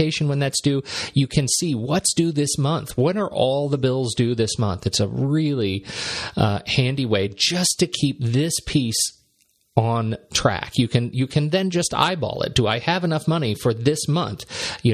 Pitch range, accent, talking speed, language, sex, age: 115-150 Hz, American, 205 wpm, English, male, 40-59